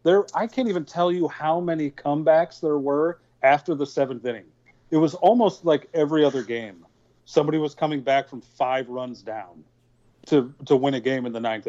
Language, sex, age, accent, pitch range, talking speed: English, male, 40-59, American, 125-145 Hz, 195 wpm